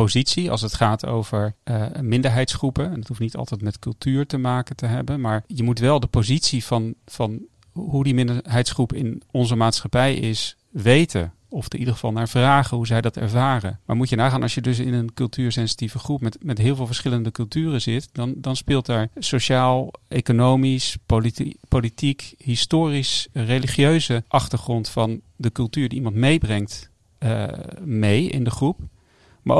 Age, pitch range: 40-59, 110-130 Hz